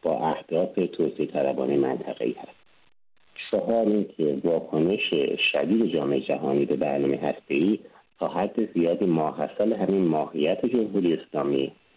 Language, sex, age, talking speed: Persian, male, 50-69, 120 wpm